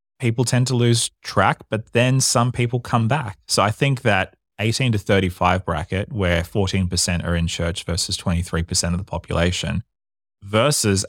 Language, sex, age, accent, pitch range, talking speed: English, male, 20-39, Australian, 85-105 Hz, 160 wpm